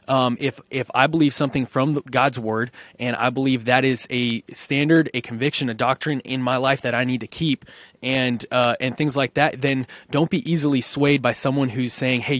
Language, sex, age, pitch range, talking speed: English, male, 20-39, 125-140 Hz, 215 wpm